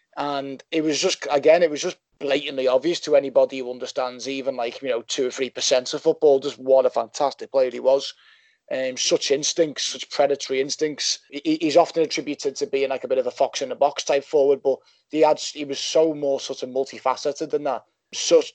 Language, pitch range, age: English, 135-170 Hz, 20-39